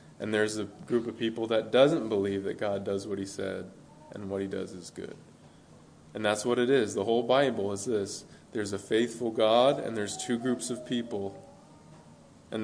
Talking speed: 200 wpm